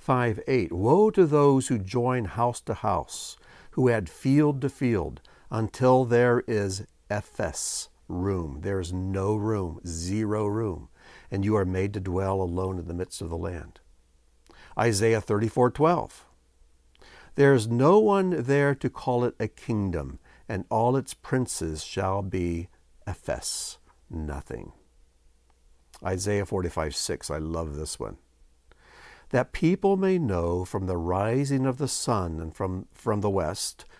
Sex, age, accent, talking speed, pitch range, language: male, 60-79, American, 145 wpm, 85-125 Hz, English